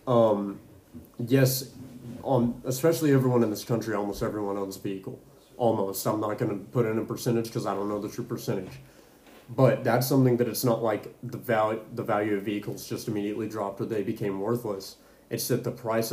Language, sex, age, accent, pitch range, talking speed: English, male, 30-49, American, 110-125 Hz, 195 wpm